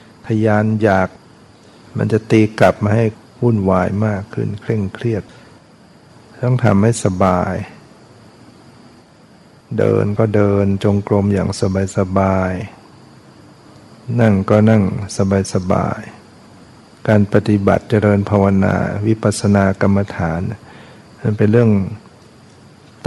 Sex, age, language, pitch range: male, 60-79, Thai, 100-110 Hz